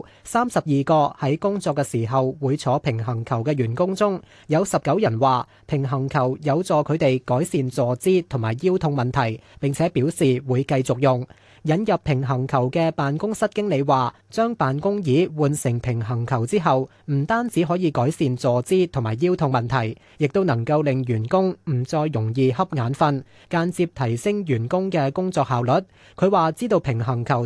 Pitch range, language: 125-165 Hz, Chinese